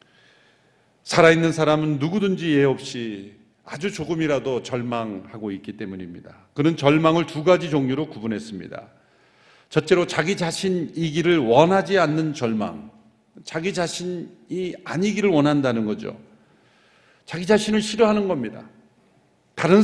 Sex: male